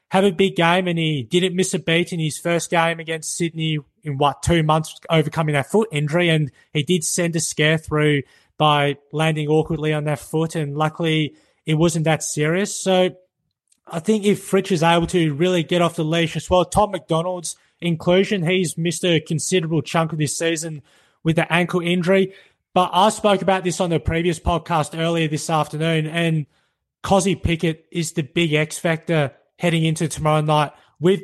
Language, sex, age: English, male, 20-39